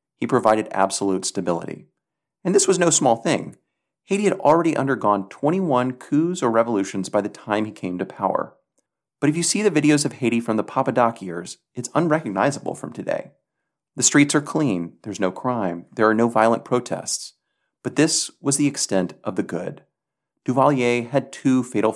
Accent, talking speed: American, 180 wpm